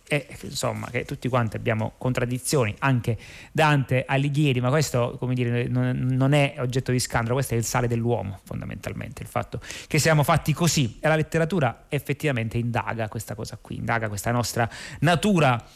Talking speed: 165 wpm